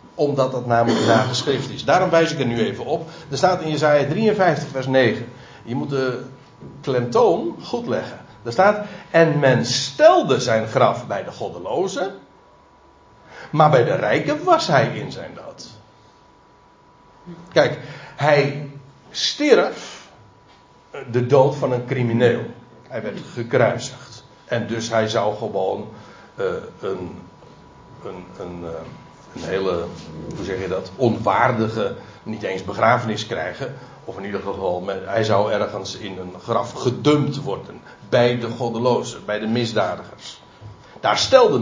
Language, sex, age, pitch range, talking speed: Dutch, male, 60-79, 115-150 Hz, 140 wpm